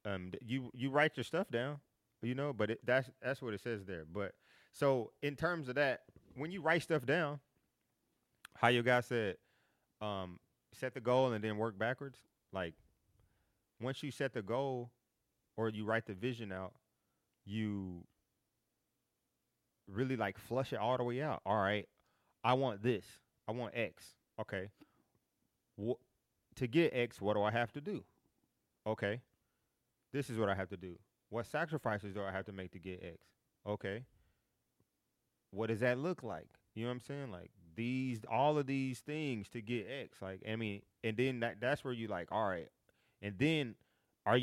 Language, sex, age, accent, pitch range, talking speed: English, male, 30-49, American, 105-135 Hz, 180 wpm